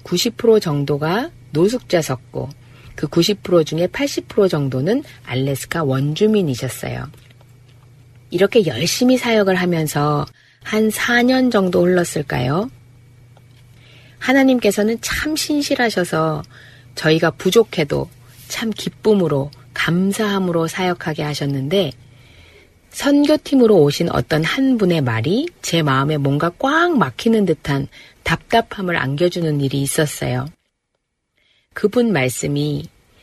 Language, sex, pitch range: Korean, female, 140-205 Hz